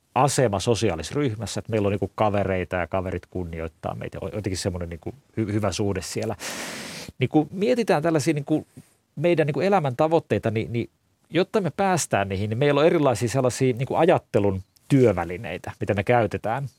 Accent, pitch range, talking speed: native, 105-150 Hz, 160 wpm